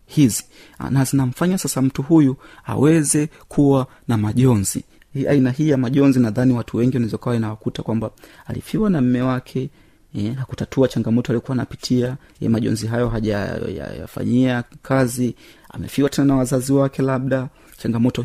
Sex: male